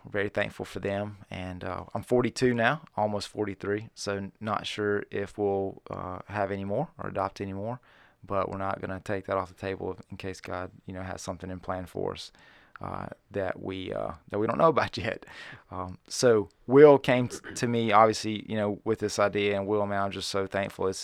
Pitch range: 95-105 Hz